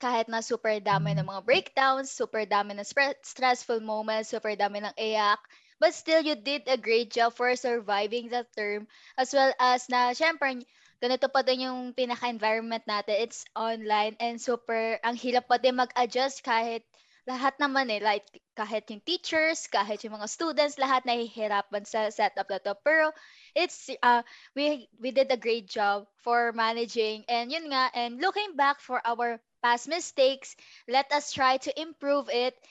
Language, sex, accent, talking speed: Filipino, female, native, 170 wpm